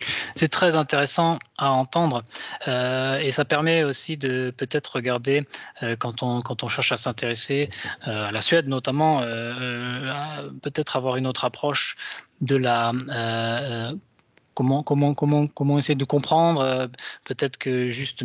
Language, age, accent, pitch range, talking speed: French, 20-39, French, 120-145 Hz, 150 wpm